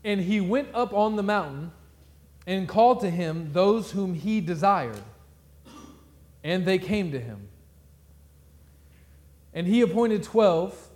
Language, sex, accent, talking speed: English, male, American, 130 wpm